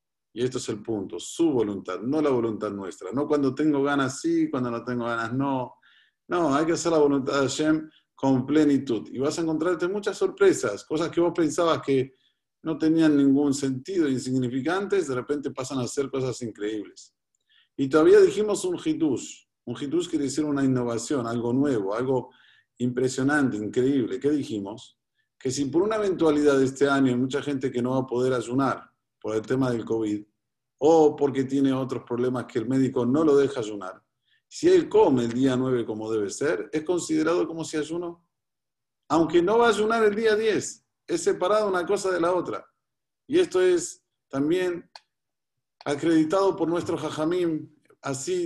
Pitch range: 130-170 Hz